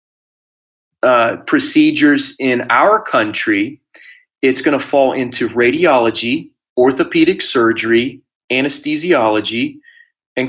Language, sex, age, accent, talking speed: English, male, 30-49, American, 85 wpm